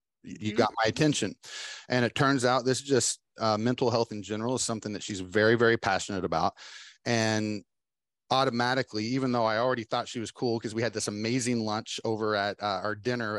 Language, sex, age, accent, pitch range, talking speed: English, male, 30-49, American, 105-130 Hz, 200 wpm